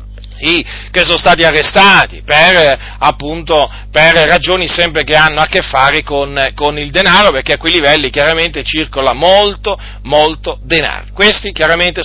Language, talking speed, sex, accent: Italian, 145 wpm, male, native